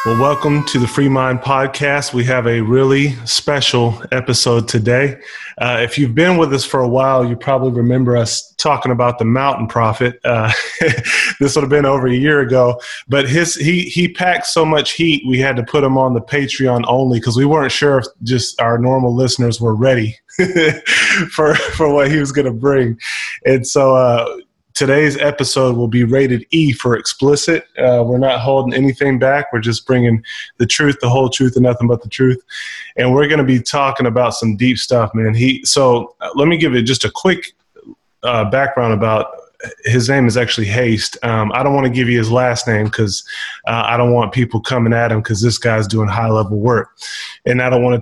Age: 20-39